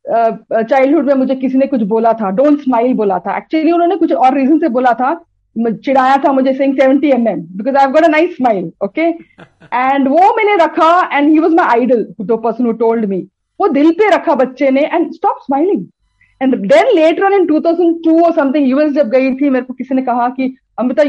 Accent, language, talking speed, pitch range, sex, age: native, Hindi, 150 wpm, 230-320 Hz, female, 40-59